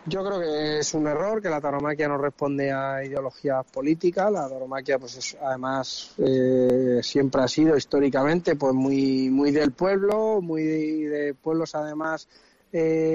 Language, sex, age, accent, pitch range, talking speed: Spanish, male, 20-39, Spanish, 130-155 Hz, 155 wpm